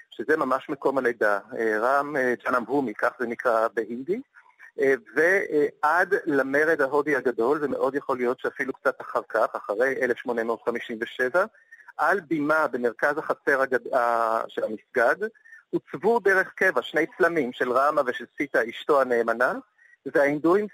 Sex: male